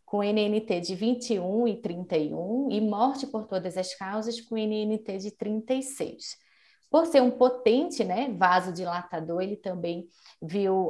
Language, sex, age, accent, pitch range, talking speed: Portuguese, female, 20-39, Brazilian, 185-245 Hz, 145 wpm